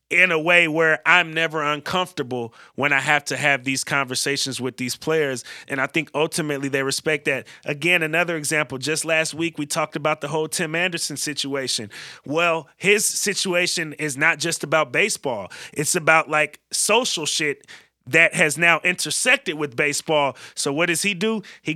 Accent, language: American, English